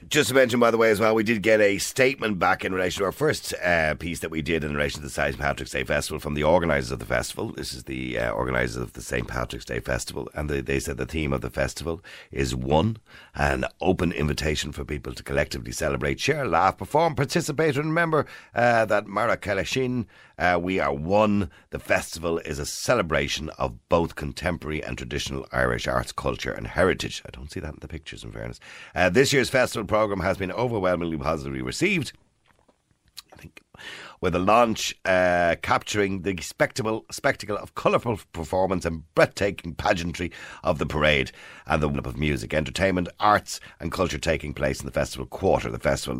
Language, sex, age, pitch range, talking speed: English, male, 60-79, 70-95 Hz, 195 wpm